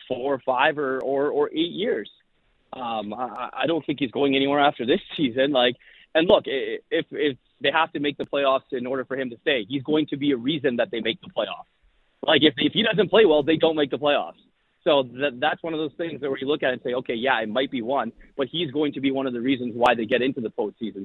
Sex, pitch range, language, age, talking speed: male, 130-150 Hz, English, 30-49, 265 wpm